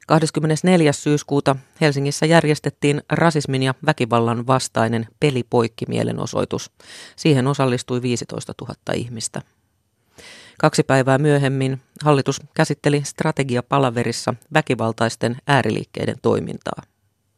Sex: female